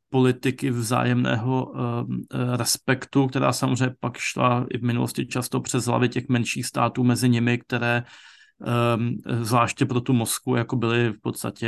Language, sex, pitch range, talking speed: Slovak, male, 115-125 Hz, 145 wpm